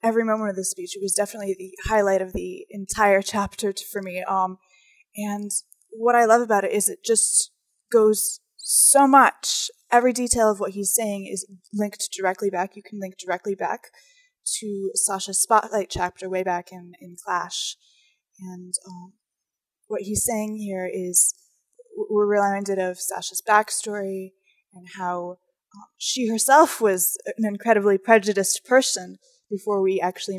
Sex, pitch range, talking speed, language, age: female, 185-220 Hz, 150 wpm, English, 20-39